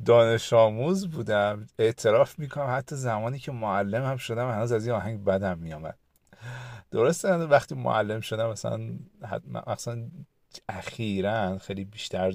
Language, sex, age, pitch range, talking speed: Persian, male, 50-69, 100-135 Hz, 125 wpm